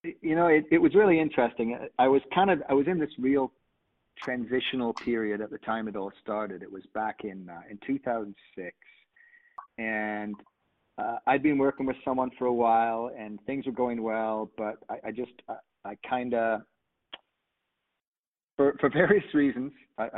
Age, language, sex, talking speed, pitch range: 40-59, English, male, 175 wpm, 110-130 Hz